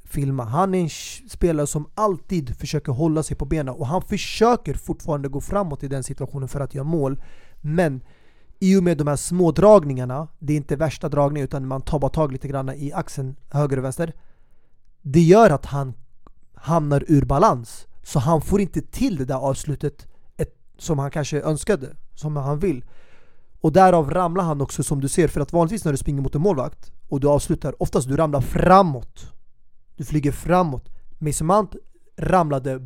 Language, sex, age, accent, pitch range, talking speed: Swedish, male, 30-49, native, 135-170 Hz, 185 wpm